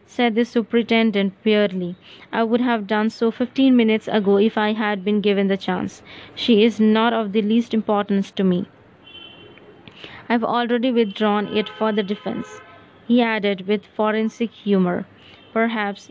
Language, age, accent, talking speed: English, 20-39, Indian, 155 wpm